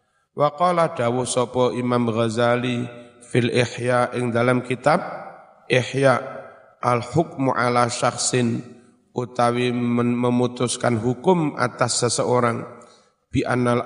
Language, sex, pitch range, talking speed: Indonesian, male, 120-145 Hz, 95 wpm